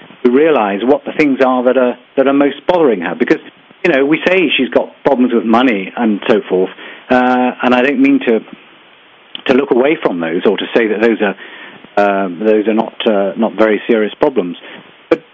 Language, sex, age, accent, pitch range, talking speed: English, male, 50-69, British, 115-140 Hz, 205 wpm